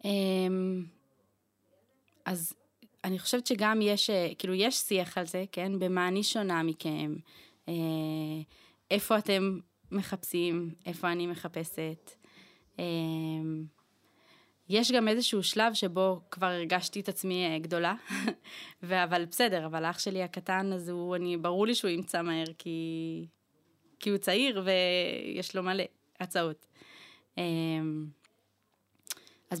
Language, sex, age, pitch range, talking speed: Hebrew, female, 20-39, 170-210 Hz, 110 wpm